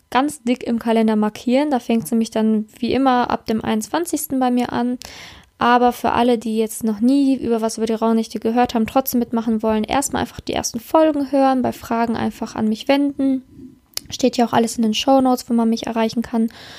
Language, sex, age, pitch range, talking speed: German, female, 10-29, 230-265 Hz, 215 wpm